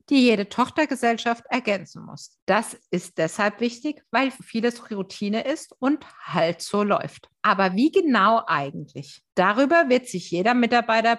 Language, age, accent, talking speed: German, 50-69, German, 140 wpm